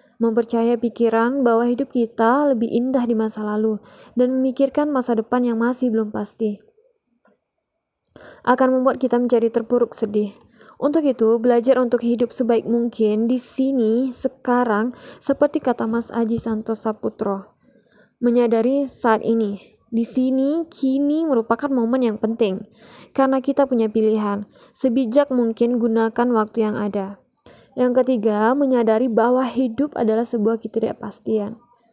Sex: female